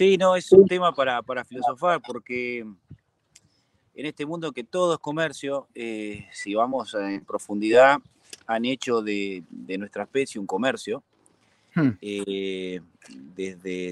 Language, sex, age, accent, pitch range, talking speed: Spanish, male, 30-49, Argentinian, 110-145 Hz, 135 wpm